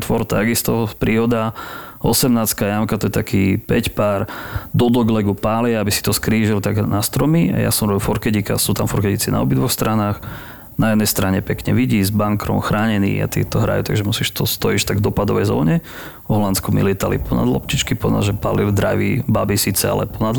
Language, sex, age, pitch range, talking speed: Slovak, male, 30-49, 100-120 Hz, 185 wpm